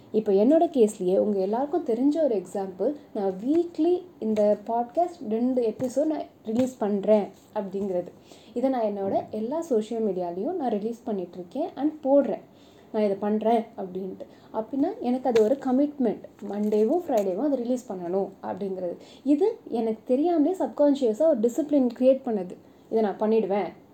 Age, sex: 20-39, female